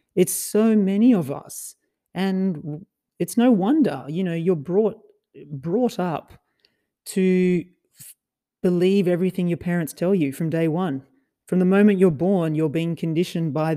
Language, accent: English, Australian